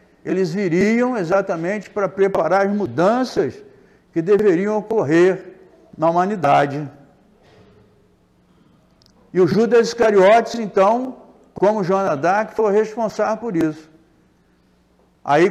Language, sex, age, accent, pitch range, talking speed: Portuguese, male, 60-79, Brazilian, 180-220 Hz, 100 wpm